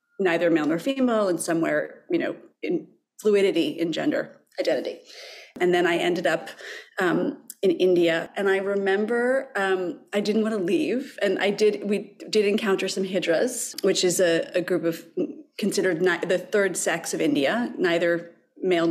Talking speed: 165 wpm